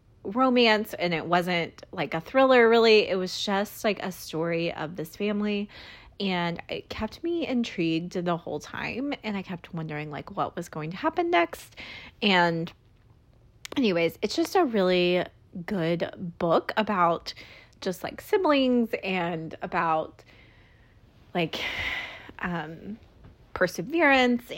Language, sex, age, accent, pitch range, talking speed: English, female, 20-39, American, 160-210 Hz, 130 wpm